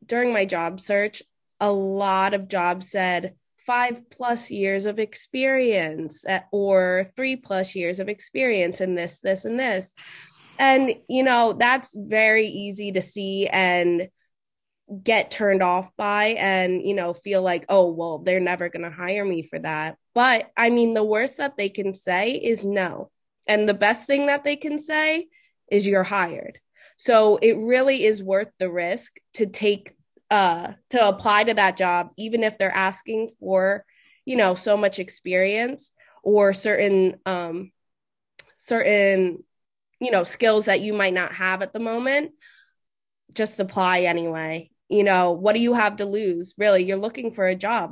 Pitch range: 185-230 Hz